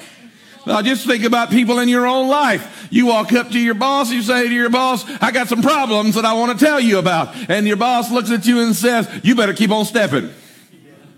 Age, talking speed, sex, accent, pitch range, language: 50-69, 235 wpm, male, American, 210-260 Hz, English